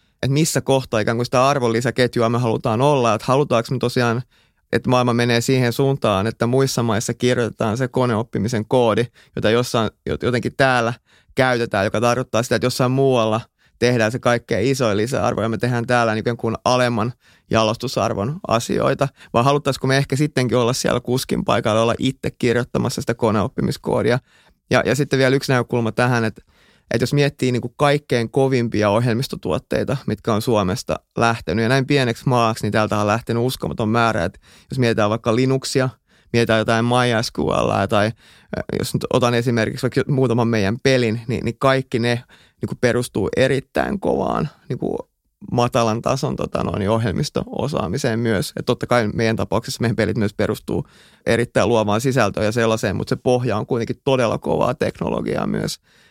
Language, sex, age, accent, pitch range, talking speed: Finnish, male, 30-49, native, 110-125 Hz, 160 wpm